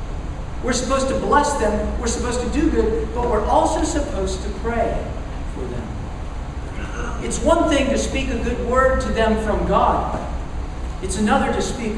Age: 50-69